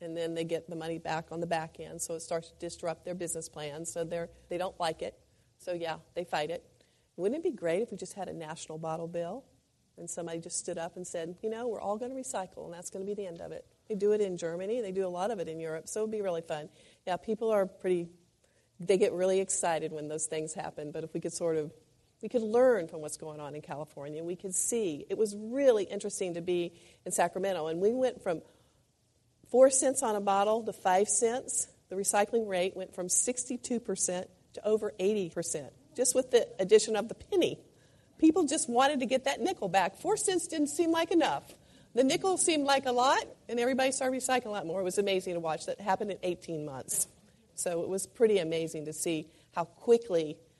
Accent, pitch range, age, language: American, 165-220 Hz, 40-59, English